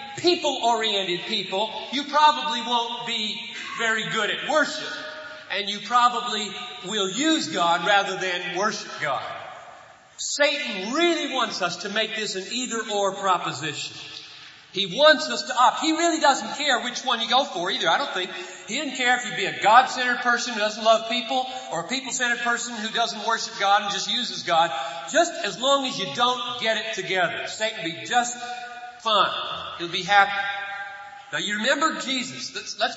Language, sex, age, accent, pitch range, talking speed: English, male, 40-59, American, 190-250 Hz, 170 wpm